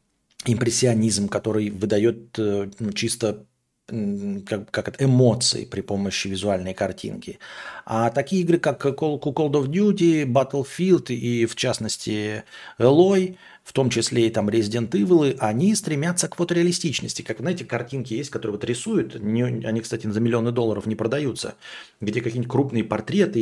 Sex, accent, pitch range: male, native, 110-155 Hz